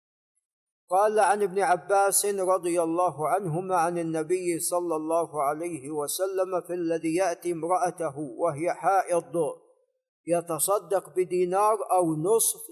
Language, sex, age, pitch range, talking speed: Arabic, male, 50-69, 160-195 Hz, 110 wpm